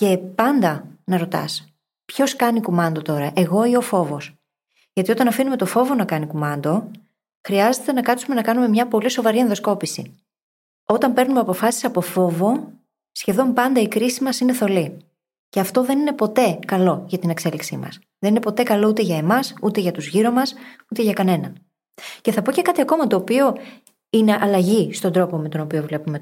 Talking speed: 190 wpm